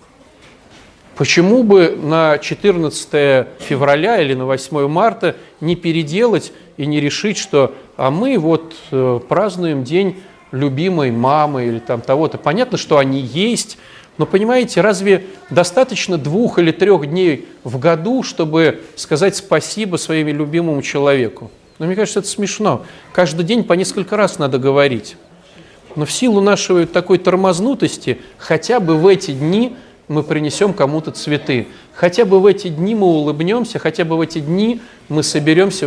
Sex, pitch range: male, 150-195 Hz